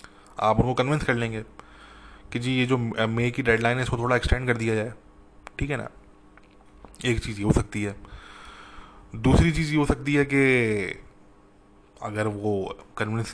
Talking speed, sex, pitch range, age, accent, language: 155 wpm, male, 100-120 Hz, 20-39, Indian, English